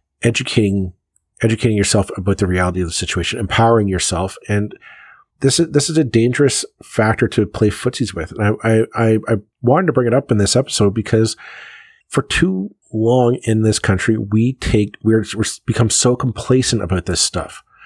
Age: 40-59